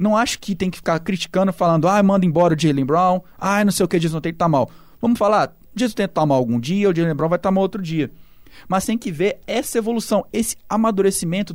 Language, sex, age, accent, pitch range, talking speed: Portuguese, male, 20-39, Brazilian, 155-200 Hz, 245 wpm